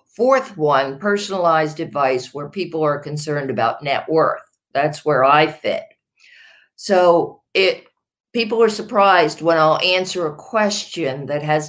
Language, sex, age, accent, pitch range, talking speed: English, female, 50-69, American, 150-185 Hz, 140 wpm